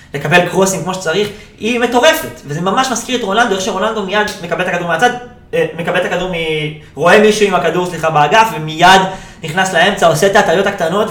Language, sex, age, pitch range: Hebrew, male, 20-39, 155-205 Hz